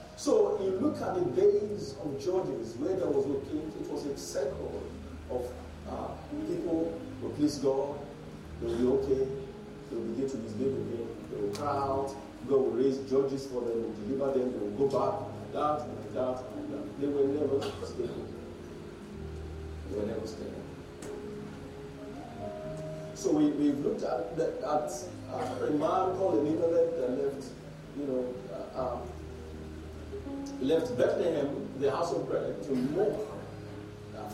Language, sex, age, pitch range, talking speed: English, male, 40-59, 105-165 Hz, 170 wpm